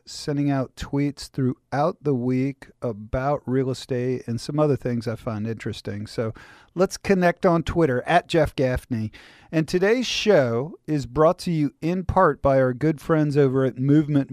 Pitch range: 130-165 Hz